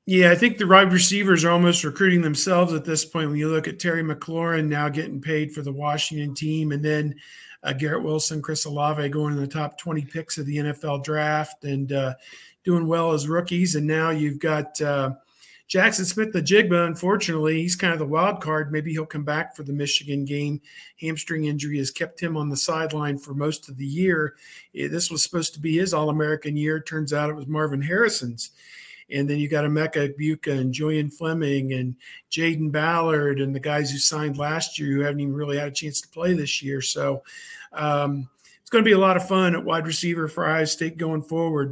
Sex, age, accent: male, 50-69, American